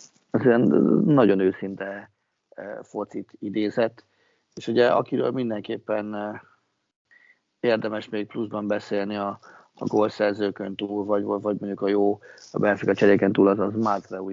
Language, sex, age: Hungarian, male, 30-49